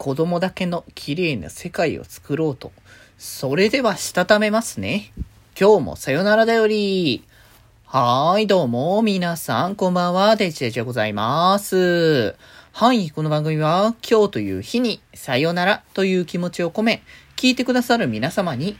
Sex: male